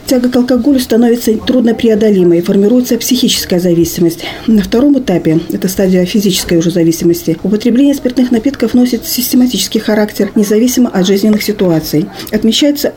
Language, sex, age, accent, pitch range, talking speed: Russian, female, 40-59, native, 195-245 Hz, 130 wpm